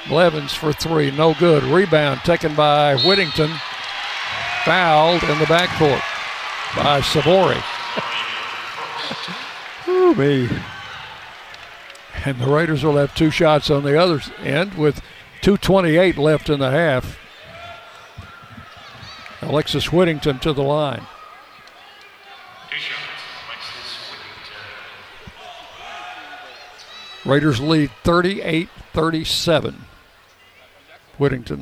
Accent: American